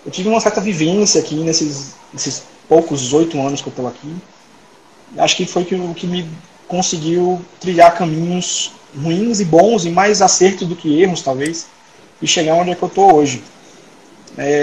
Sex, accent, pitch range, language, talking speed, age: male, Brazilian, 140-175 Hz, Portuguese, 180 wpm, 20-39